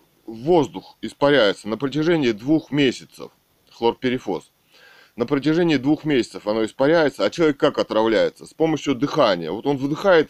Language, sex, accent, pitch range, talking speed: Russian, male, native, 115-155 Hz, 135 wpm